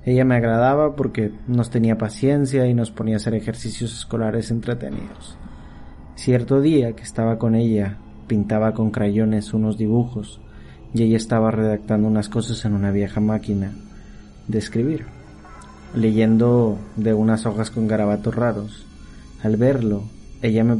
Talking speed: 140 wpm